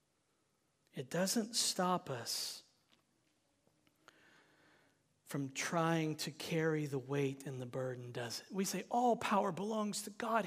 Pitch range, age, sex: 160-230 Hz, 40-59, male